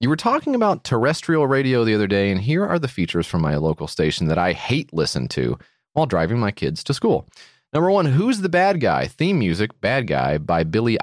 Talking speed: 225 wpm